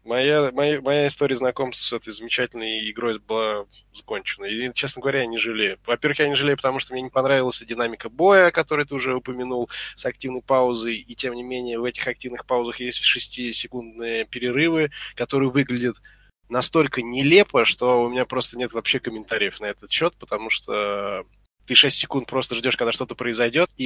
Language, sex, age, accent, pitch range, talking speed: Russian, male, 20-39, native, 115-135 Hz, 180 wpm